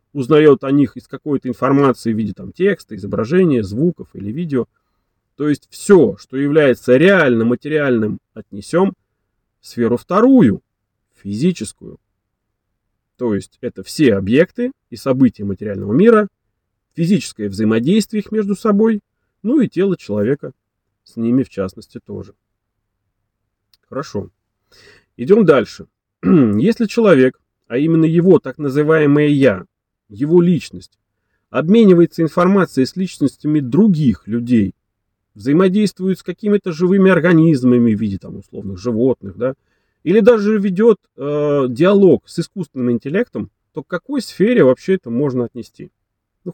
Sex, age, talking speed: male, 30-49, 120 wpm